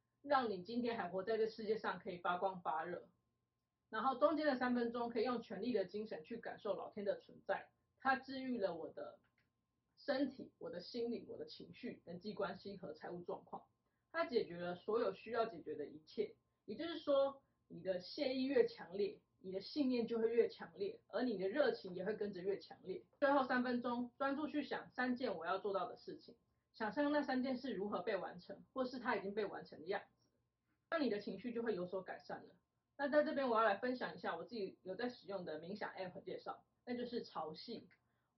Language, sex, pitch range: Chinese, female, 195-260 Hz